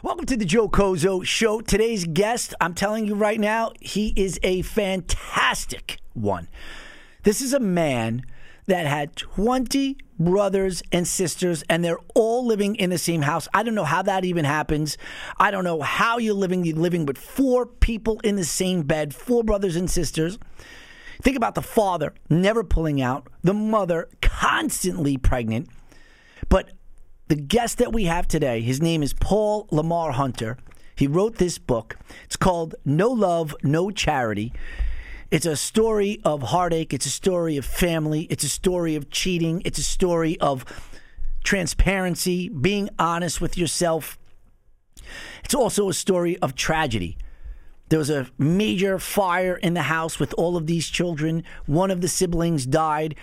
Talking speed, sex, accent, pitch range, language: 160 wpm, male, American, 155-200 Hz, English